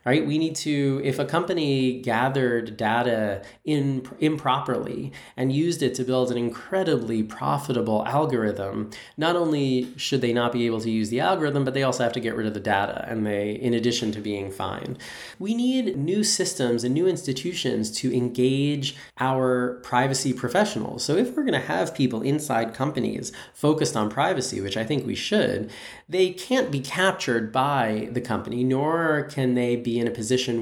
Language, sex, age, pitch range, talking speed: English, male, 20-39, 110-140 Hz, 180 wpm